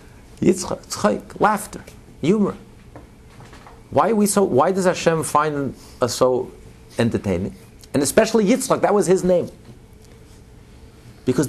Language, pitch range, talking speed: English, 140-205 Hz, 115 wpm